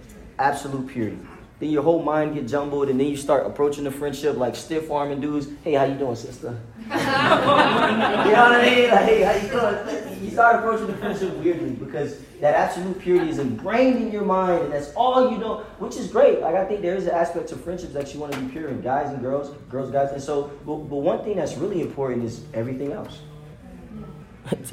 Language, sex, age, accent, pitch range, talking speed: English, male, 20-39, American, 135-190 Hz, 220 wpm